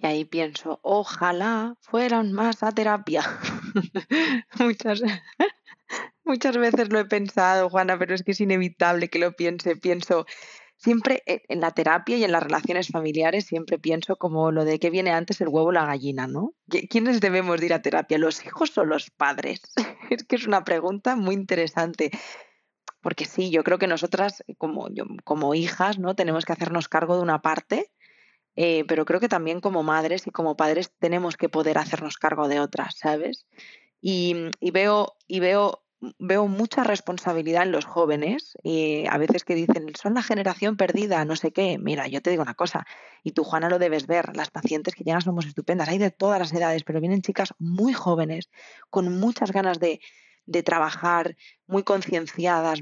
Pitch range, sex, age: 165-205 Hz, female, 20-39